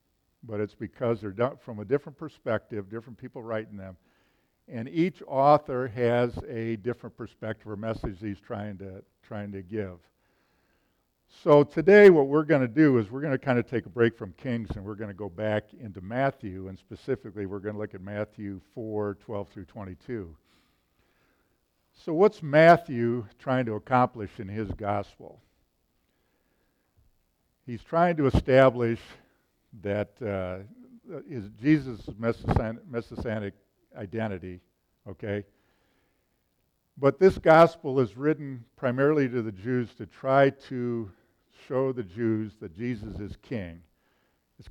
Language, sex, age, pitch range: English, male, 50-69, 100-130 Hz